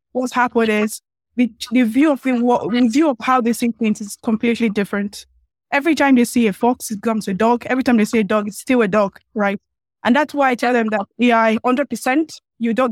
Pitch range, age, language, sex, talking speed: 215-250 Hz, 20-39, English, female, 235 wpm